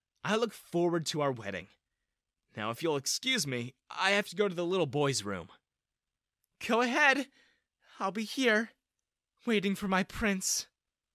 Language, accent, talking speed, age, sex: English, American, 155 wpm, 20-39, male